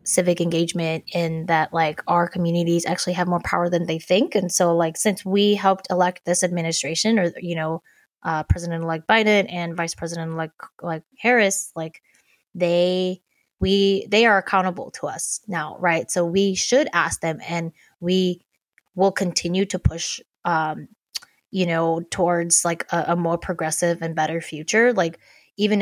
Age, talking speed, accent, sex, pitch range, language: 20-39, 165 wpm, American, female, 170-195 Hz, English